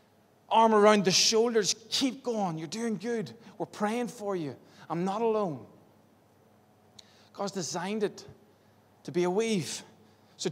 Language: English